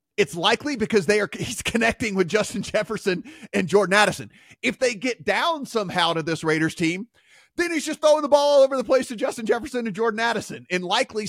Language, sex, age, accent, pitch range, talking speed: English, male, 30-49, American, 155-205 Hz, 215 wpm